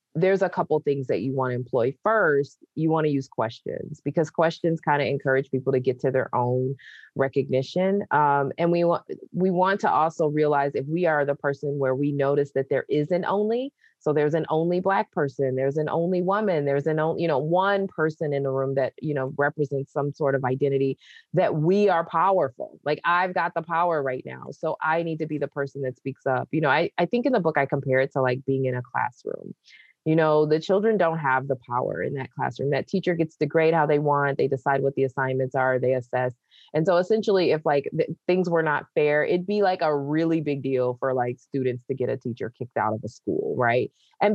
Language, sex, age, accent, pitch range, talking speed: English, female, 30-49, American, 135-170 Hz, 235 wpm